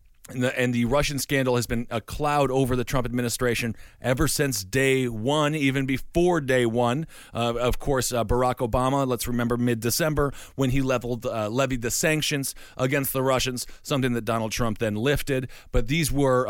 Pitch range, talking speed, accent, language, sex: 120-145 Hz, 180 wpm, American, English, male